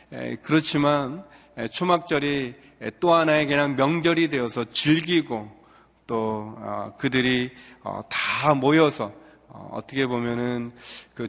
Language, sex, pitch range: Korean, male, 115-145 Hz